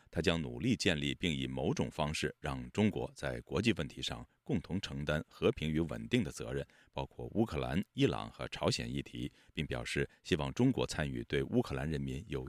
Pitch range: 70-105 Hz